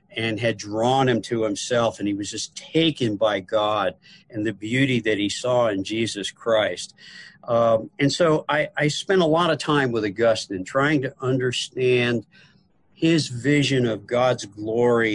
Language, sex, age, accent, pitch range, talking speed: English, male, 50-69, American, 110-145 Hz, 165 wpm